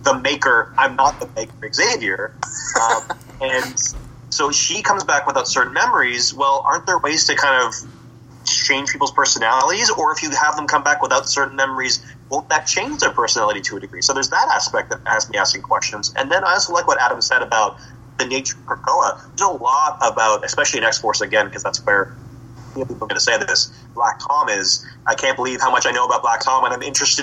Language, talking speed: English, 225 wpm